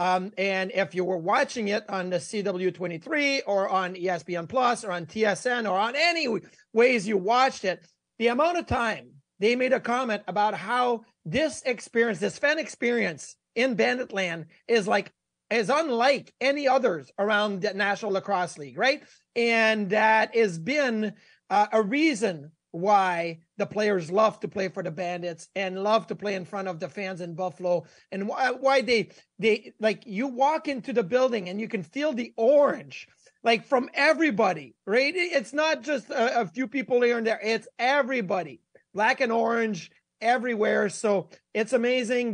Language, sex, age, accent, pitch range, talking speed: English, male, 30-49, American, 195-245 Hz, 170 wpm